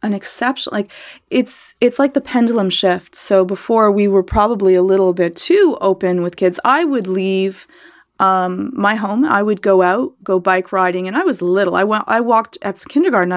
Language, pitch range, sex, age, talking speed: English, 185-225 Hz, female, 30-49, 200 wpm